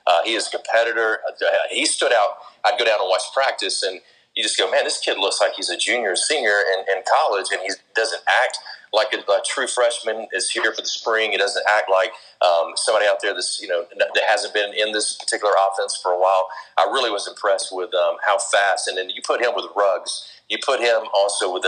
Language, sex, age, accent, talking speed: English, male, 40-59, American, 240 wpm